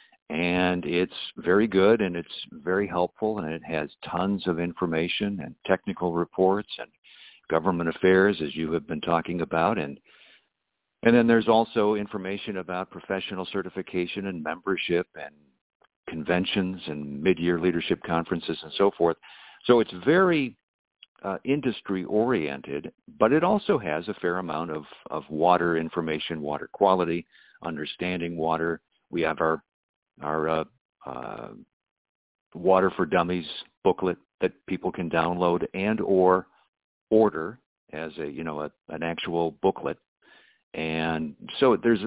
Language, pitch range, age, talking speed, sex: English, 80-100 Hz, 50-69, 135 wpm, male